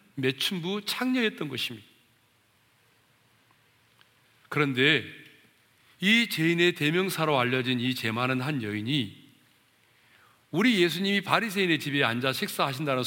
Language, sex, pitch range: Korean, male, 125-185 Hz